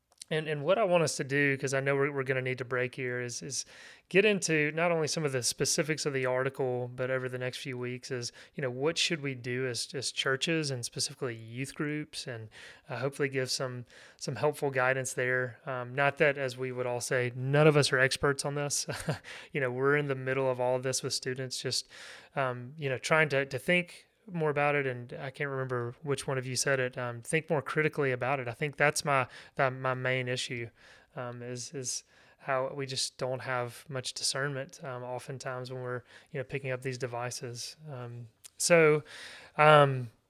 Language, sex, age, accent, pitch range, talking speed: English, male, 30-49, American, 125-145 Hz, 215 wpm